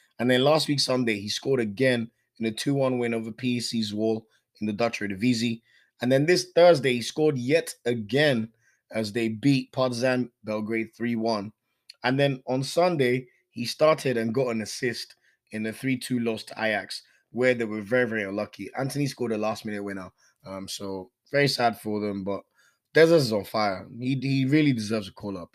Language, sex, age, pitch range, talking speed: English, male, 20-39, 110-135 Hz, 180 wpm